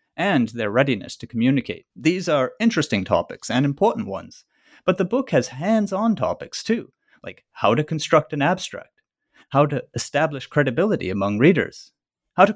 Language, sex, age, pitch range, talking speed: English, male, 30-49, 125-195 Hz, 160 wpm